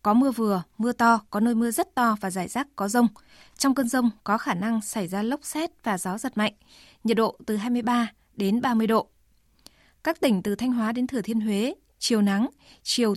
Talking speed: 220 wpm